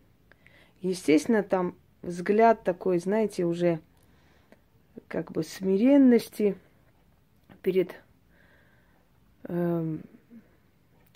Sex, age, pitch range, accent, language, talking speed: female, 30-49, 155-205 Hz, native, Russian, 60 wpm